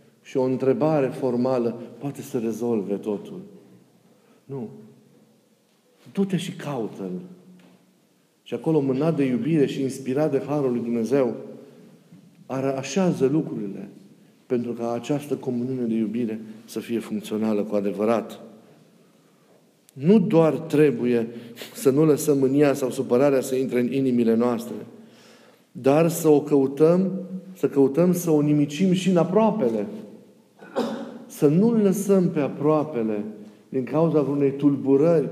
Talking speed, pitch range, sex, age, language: 120 wpm, 125-175 Hz, male, 40-59, Romanian